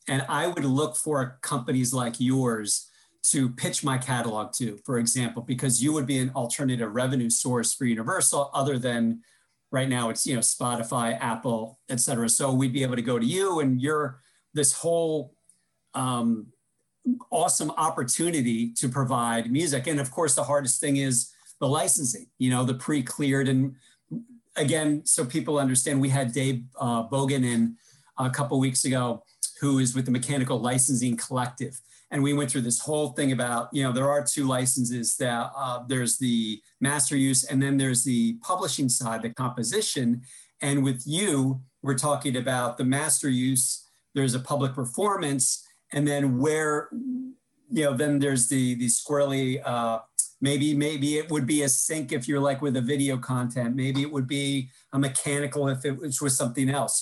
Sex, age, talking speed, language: male, 40-59, 175 wpm, English